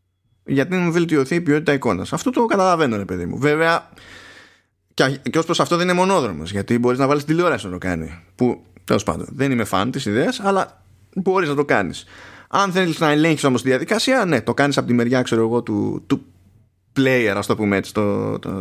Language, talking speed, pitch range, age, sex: Greek, 210 wpm, 105-175 Hz, 20-39, male